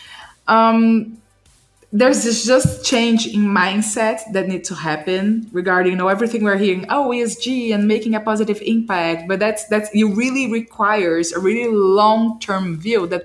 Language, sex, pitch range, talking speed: English, female, 185-225 Hz, 160 wpm